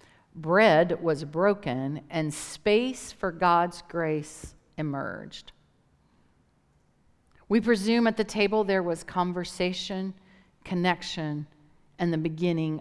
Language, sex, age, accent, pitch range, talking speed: English, female, 50-69, American, 145-190 Hz, 100 wpm